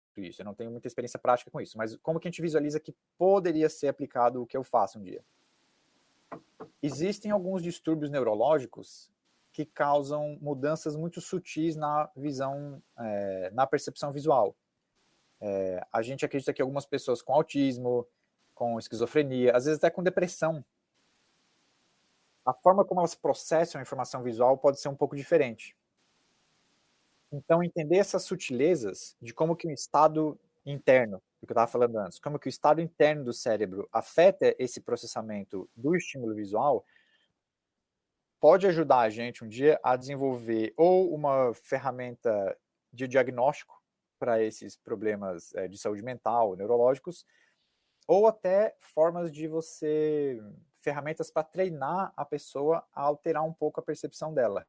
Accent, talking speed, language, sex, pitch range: Brazilian, 145 wpm, Portuguese, male, 125-160 Hz